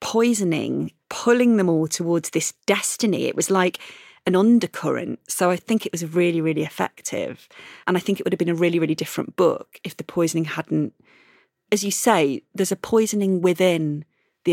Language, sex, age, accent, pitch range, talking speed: English, female, 30-49, British, 165-215 Hz, 180 wpm